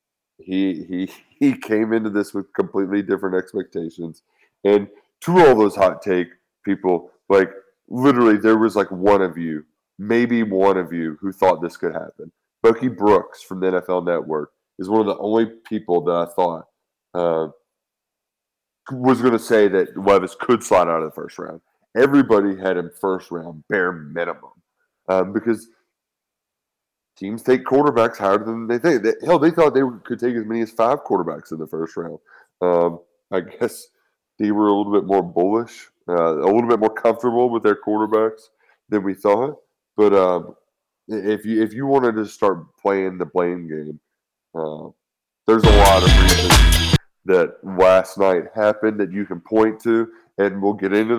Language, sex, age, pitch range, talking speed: English, male, 20-39, 90-115 Hz, 175 wpm